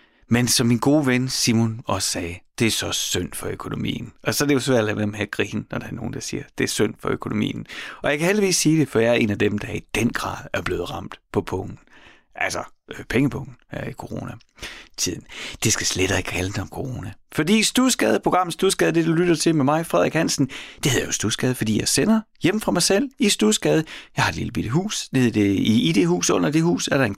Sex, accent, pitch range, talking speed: male, native, 110-175 Hz, 245 wpm